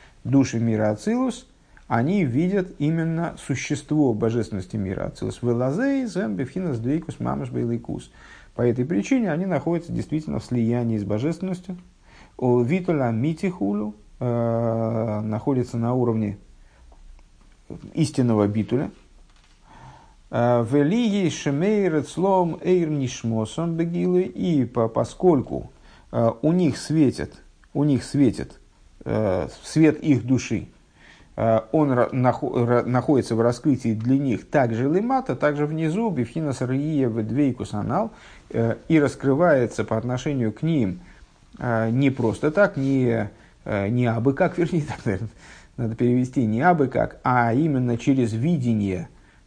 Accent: native